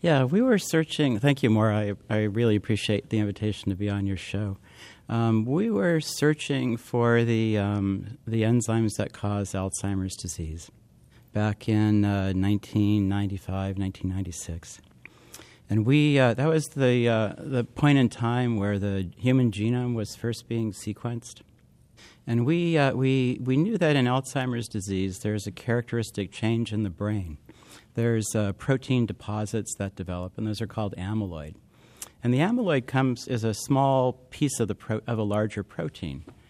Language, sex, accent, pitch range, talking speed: English, male, American, 100-130 Hz, 160 wpm